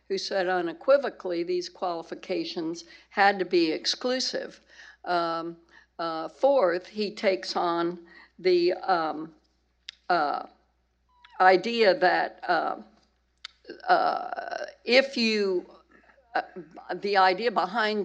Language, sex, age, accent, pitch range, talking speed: English, female, 60-79, American, 180-255 Hz, 95 wpm